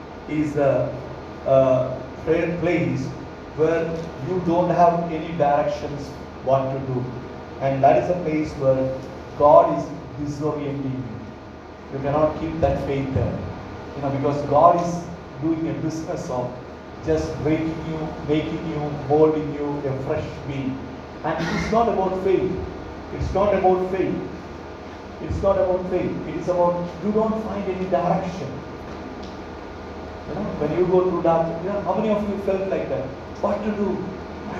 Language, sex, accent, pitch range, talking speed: English, male, Indian, 135-180 Hz, 145 wpm